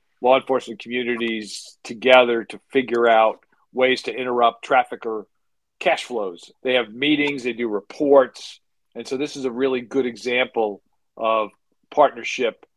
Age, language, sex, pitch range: 50-69, English, male, 110-135 Hz